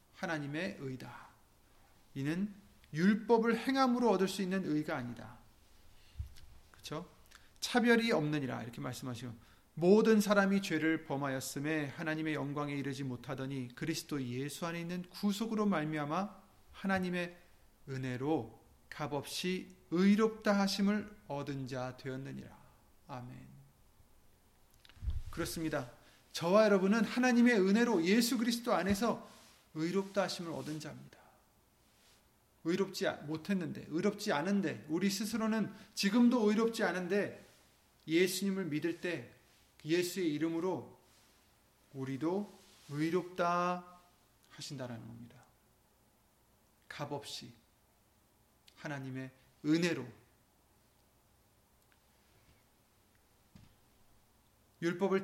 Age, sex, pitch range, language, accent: 30-49, male, 130-195 Hz, Korean, native